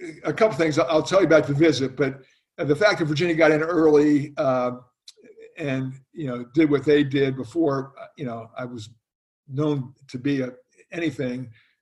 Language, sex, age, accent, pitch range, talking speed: English, male, 50-69, American, 130-155 Hz, 180 wpm